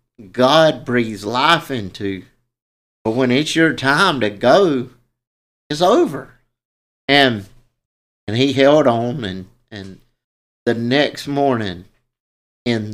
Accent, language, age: American, English, 50-69